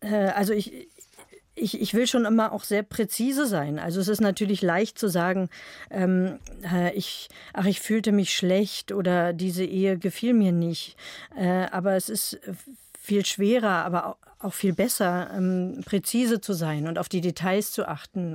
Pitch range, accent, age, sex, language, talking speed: 170-200 Hz, German, 50-69, female, German, 170 wpm